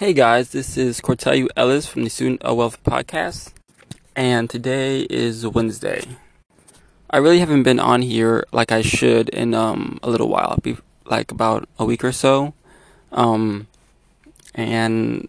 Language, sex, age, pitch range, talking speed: English, male, 20-39, 115-125 Hz, 150 wpm